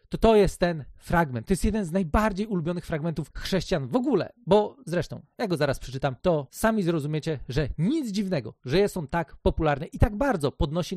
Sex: male